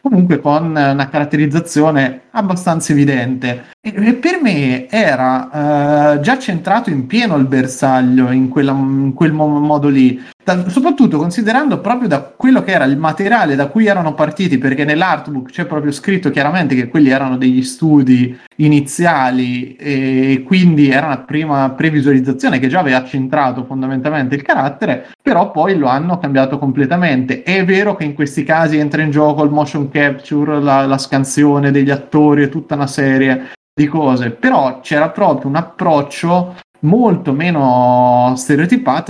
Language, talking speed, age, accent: Italian, 155 wpm, 30-49, native